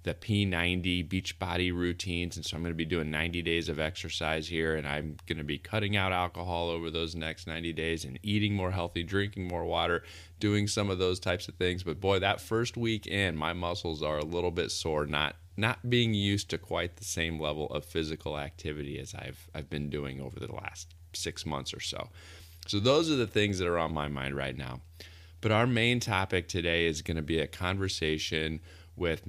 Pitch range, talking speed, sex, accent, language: 80-100 Hz, 210 wpm, male, American, English